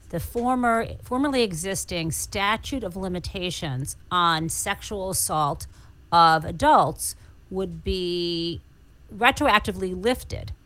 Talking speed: 90 wpm